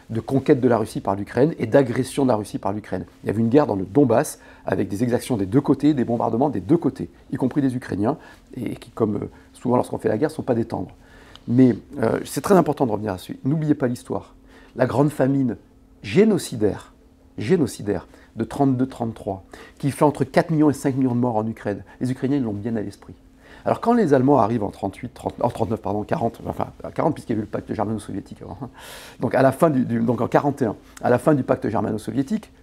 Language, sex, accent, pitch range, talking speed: French, male, French, 115-140 Hz, 230 wpm